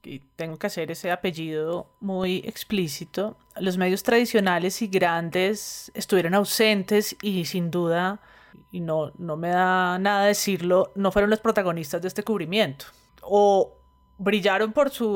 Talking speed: 145 wpm